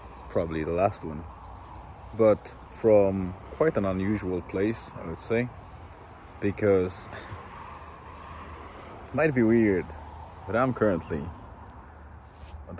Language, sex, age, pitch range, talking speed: English, male, 30-49, 80-100 Hz, 105 wpm